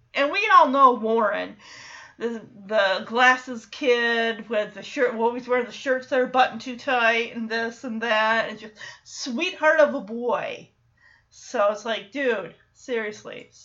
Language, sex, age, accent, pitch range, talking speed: English, female, 30-49, American, 225-310 Hz, 165 wpm